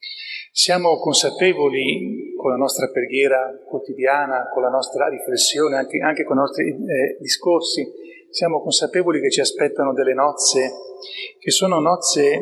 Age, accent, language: 40-59, native, Italian